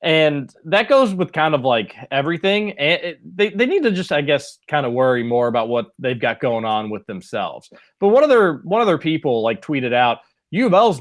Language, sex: English, male